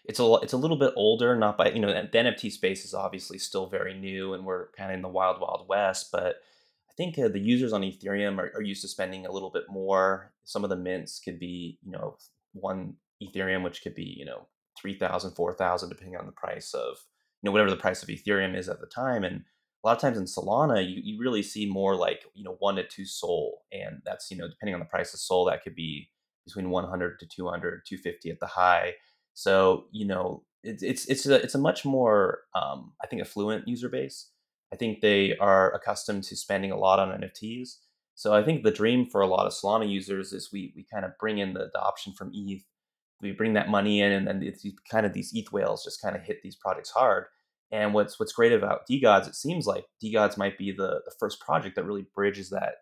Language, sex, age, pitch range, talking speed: English, male, 20-39, 95-120 Hz, 235 wpm